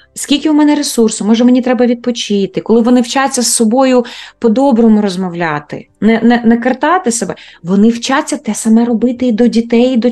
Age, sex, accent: 20-39, female, native